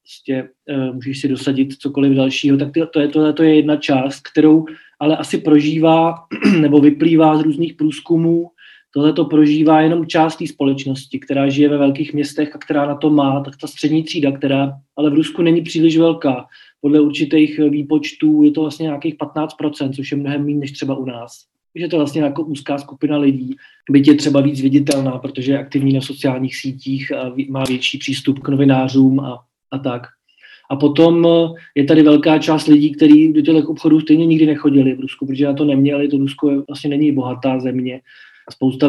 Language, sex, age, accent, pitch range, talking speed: Czech, male, 20-39, native, 140-155 Hz, 180 wpm